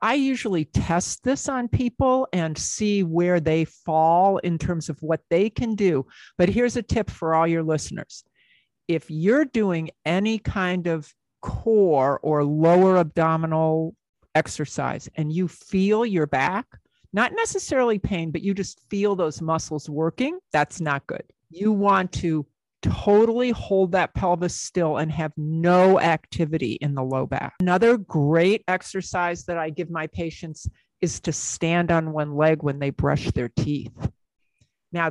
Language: English